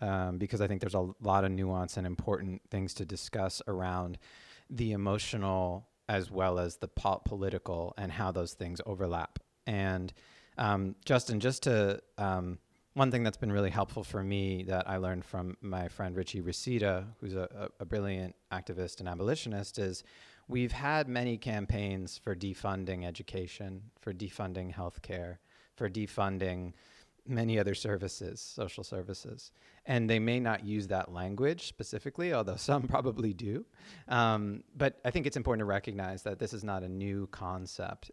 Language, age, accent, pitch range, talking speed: English, 30-49, American, 95-110 Hz, 160 wpm